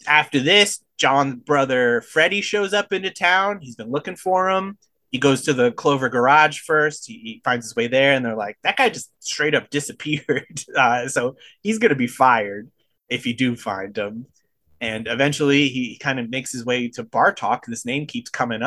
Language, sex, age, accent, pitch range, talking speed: English, male, 20-39, American, 120-180 Hz, 200 wpm